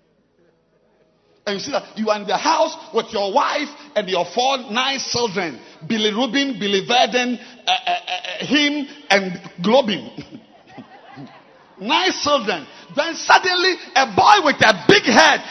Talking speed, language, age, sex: 145 wpm, English, 50-69, male